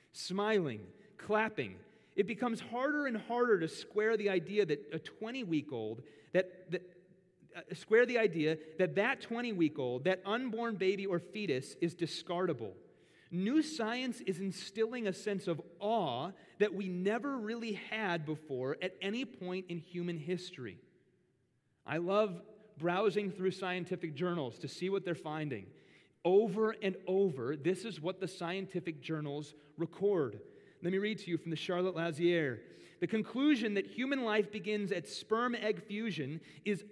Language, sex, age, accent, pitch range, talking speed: English, male, 30-49, American, 175-220 Hz, 145 wpm